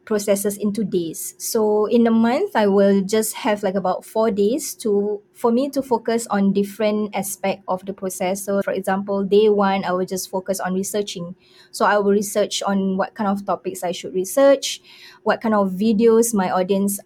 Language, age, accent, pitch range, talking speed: English, 20-39, Malaysian, 190-220 Hz, 195 wpm